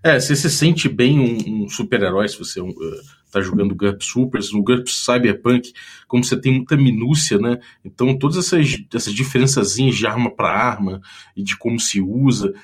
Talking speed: 185 wpm